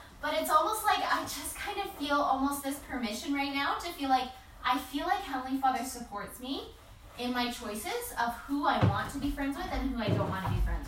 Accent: American